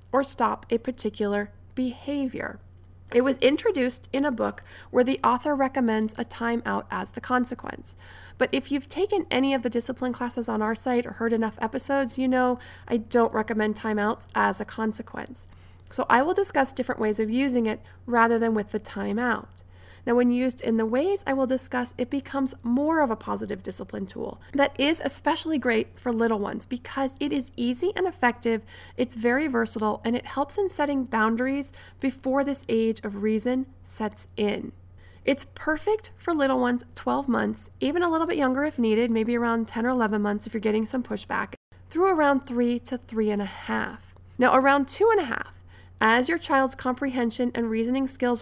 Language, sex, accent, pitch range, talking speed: English, female, American, 220-270 Hz, 185 wpm